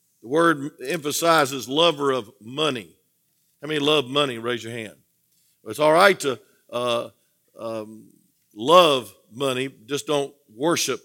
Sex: male